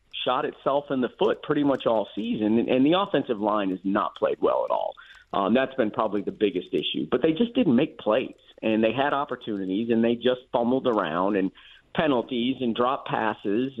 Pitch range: 115-140 Hz